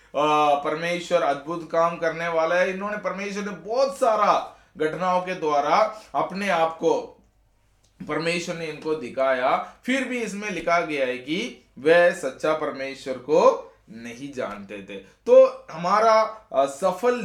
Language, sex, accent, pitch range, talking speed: Hindi, male, native, 145-195 Hz, 130 wpm